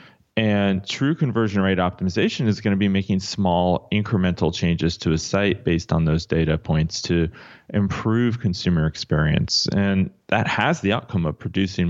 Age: 30-49